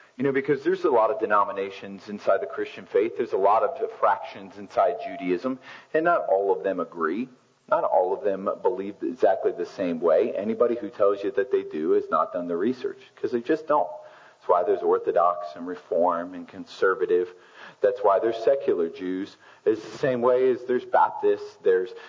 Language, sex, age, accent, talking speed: English, male, 40-59, American, 195 wpm